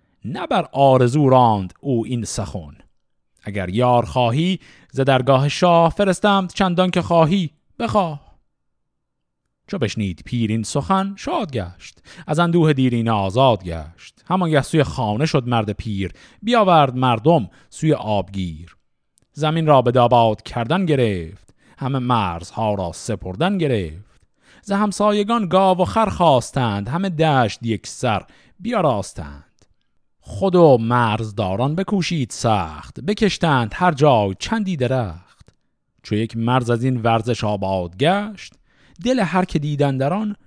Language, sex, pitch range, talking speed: Persian, male, 110-165 Hz, 130 wpm